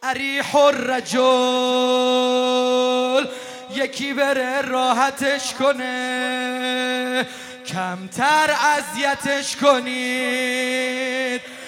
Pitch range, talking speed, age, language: 250-295 Hz, 50 wpm, 20-39, Arabic